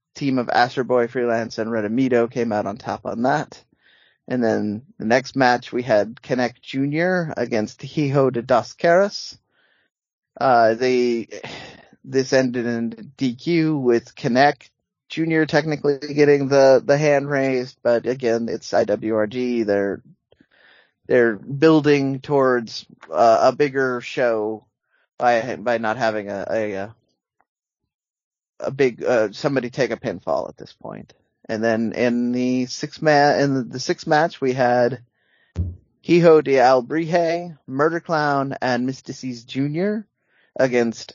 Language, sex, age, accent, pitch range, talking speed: English, male, 20-39, American, 120-150 Hz, 135 wpm